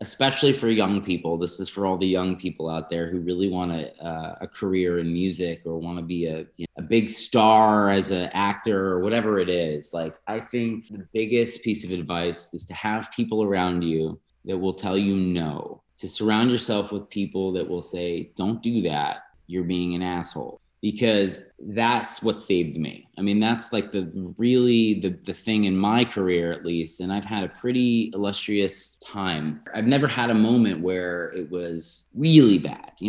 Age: 20-39